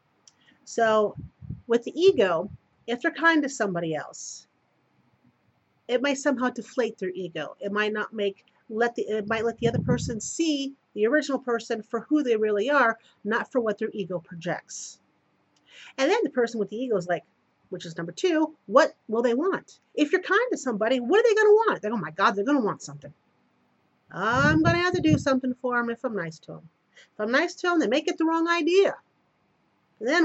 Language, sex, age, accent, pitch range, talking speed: English, female, 40-59, American, 215-300 Hz, 210 wpm